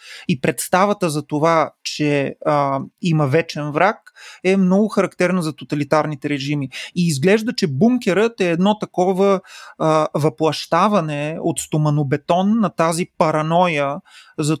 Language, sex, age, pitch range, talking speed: Bulgarian, male, 30-49, 150-170 Hz, 125 wpm